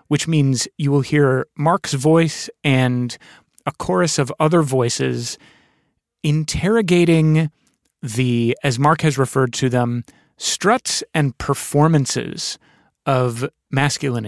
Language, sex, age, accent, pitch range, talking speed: English, male, 30-49, American, 125-155 Hz, 110 wpm